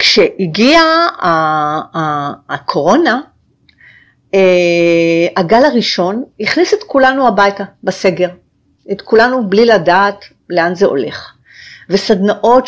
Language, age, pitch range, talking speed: Hebrew, 50-69, 175-260 Hz, 80 wpm